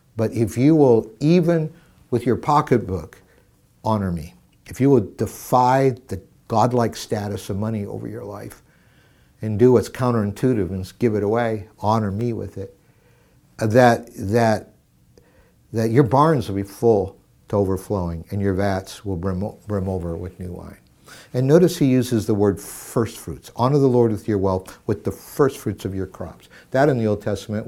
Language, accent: English, American